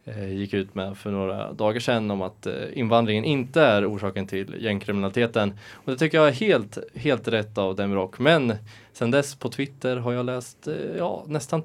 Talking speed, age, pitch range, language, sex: 180 wpm, 20-39, 100-120 Hz, Swedish, male